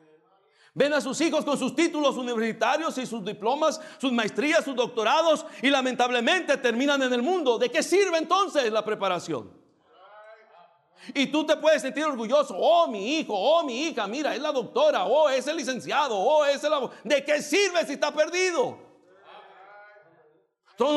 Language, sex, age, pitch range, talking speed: English, male, 60-79, 215-315 Hz, 165 wpm